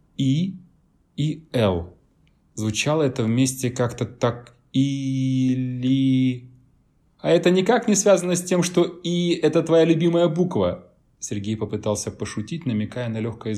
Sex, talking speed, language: male, 130 wpm, Russian